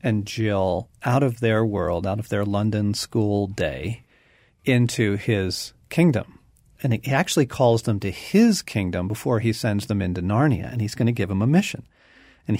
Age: 50-69